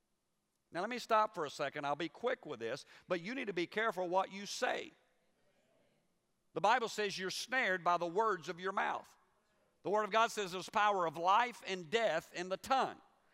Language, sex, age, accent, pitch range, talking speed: English, male, 50-69, American, 170-230 Hz, 205 wpm